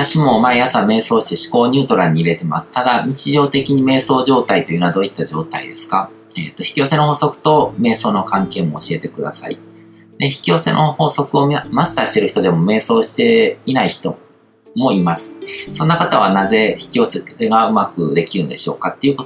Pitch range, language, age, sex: 115-170 Hz, Japanese, 40-59, male